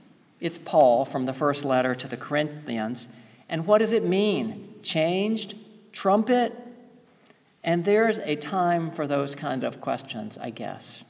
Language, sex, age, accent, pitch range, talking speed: English, male, 50-69, American, 130-170 Hz, 145 wpm